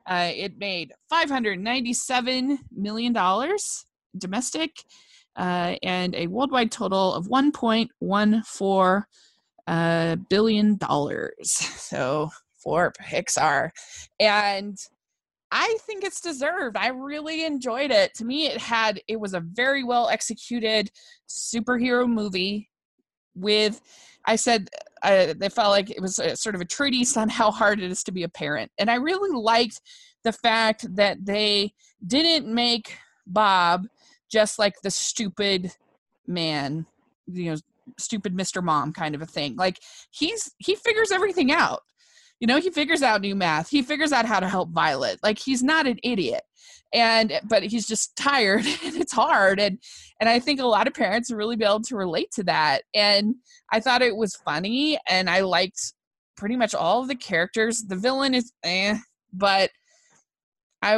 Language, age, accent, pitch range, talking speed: English, 20-39, American, 195-270 Hz, 155 wpm